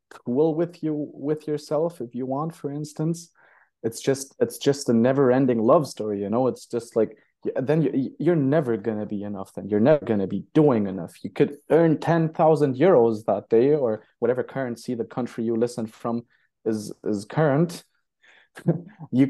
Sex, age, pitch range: male, 20-39, 110-150 Hz